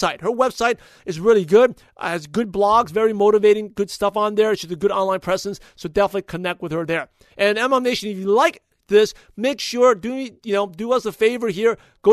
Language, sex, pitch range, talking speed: English, male, 190-230 Hz, 215 wpm